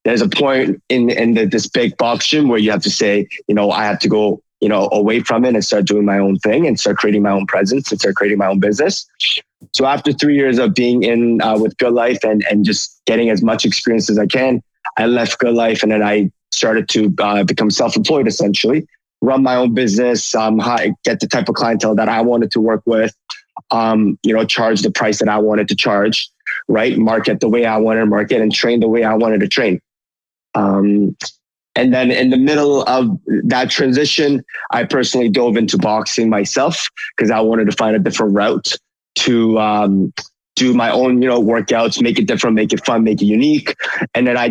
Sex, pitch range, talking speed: male, 105-120 Hz, 220 wpm